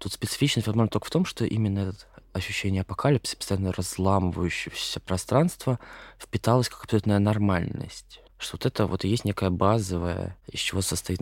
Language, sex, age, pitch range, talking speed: Russian, male, 20-39, 90-110 Hz, 155 wpm